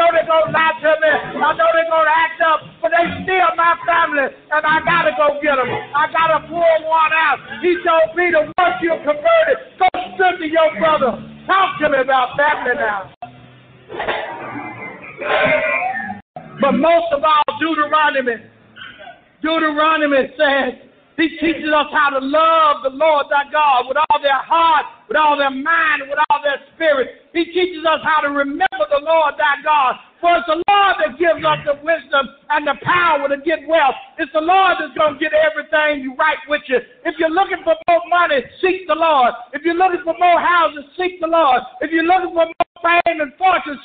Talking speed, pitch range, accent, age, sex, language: 190 wpm, 295-335 Hz, American, 50-69, male, English